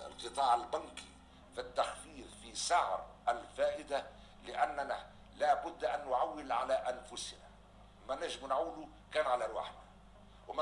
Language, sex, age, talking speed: Arabic, male, 60-79, 120 wpm